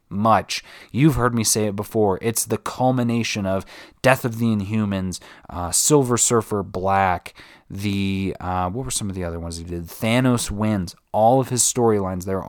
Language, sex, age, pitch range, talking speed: English, male, 20-39, 100-130 Hz, 180 wpm